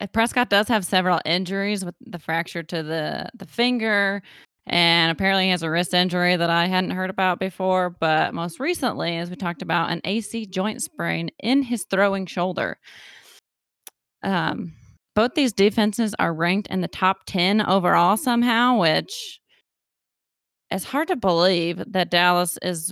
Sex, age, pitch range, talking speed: female, 20-39, 170-200 Hz, 155 wpm